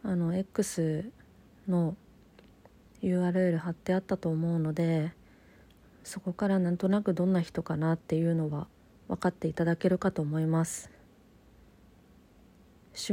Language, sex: Japanese, female